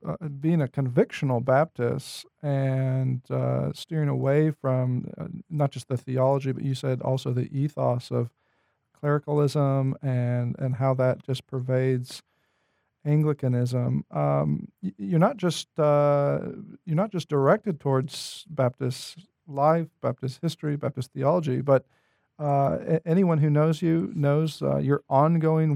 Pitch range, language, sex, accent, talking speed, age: 135-160 Hz, English, male, American, 135 wpm, 40-59